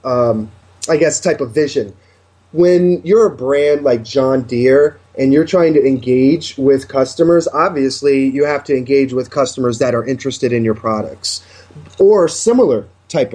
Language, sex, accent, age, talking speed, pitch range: English, male, American, 30-49, 160 wpm, 130-170 Hz